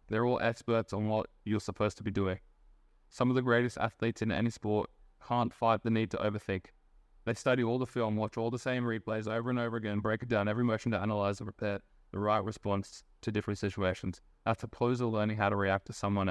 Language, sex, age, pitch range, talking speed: English, male, 20-39, 100-115 Hz, 230 wpm